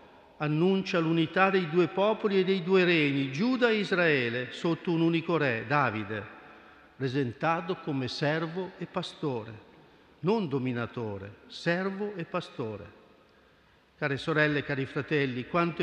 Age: 50-69